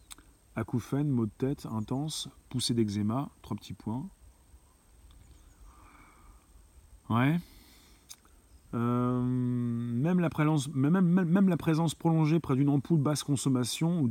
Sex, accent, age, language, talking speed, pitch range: male, French, 30-49, French, 100 wpm, 100-130 Hz